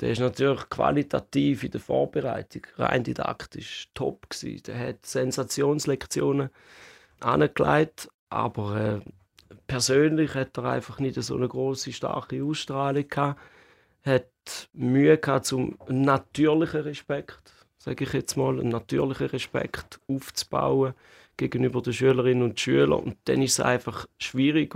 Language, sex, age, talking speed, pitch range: German, male, 30-49, 130 wpm, 120-140 Hz